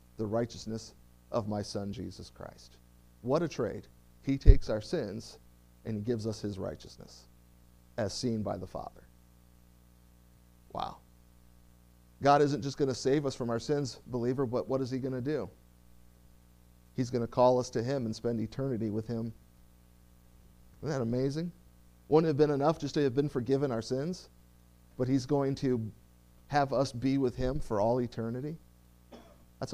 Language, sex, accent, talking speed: English, male, American, 170 wpm